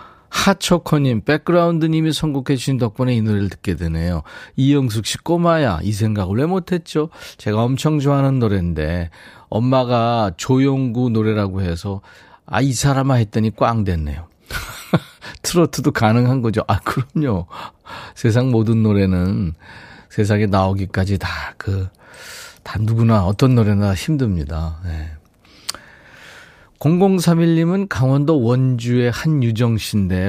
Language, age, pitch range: Korean, 40-59, 95-135 Hz